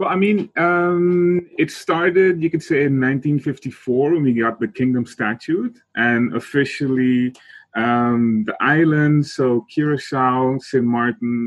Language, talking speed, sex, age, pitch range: Dutch, 135 wpm, male, 30-49, 115-140 Hz